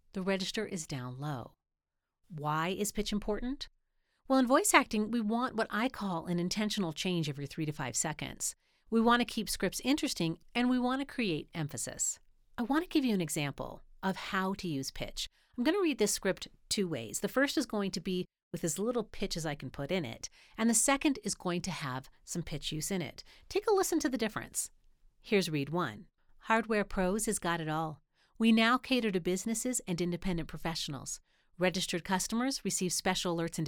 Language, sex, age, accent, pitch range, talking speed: English, female, 40-59, American, 165-230 Hz, 200 wpm